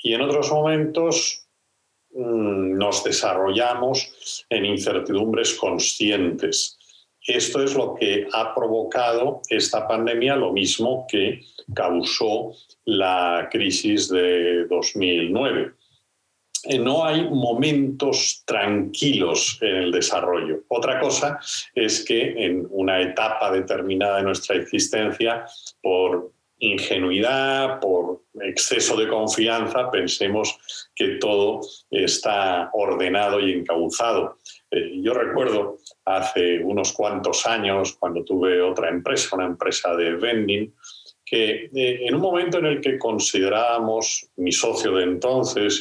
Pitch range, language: 95-145 Hz, Spanish